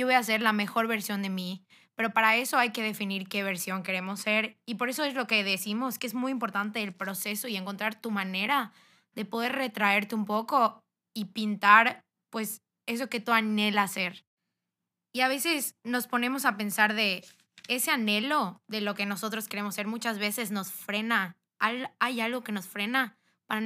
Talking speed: 190 wpm